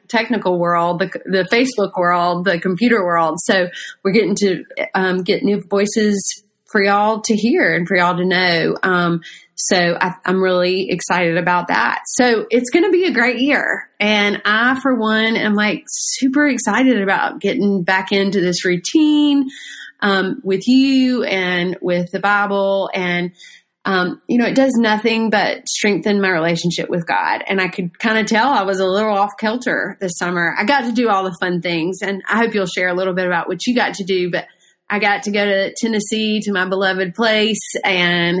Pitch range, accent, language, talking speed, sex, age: 180-220 Hz, American, English, 190 wpm, female, 30-49